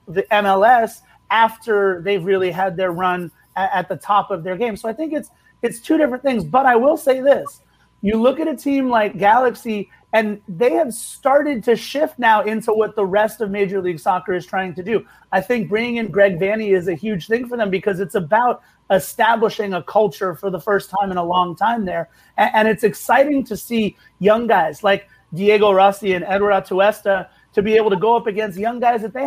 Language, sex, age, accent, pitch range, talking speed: English, male, 30-49, American, 195-225 Hz, 215 wpm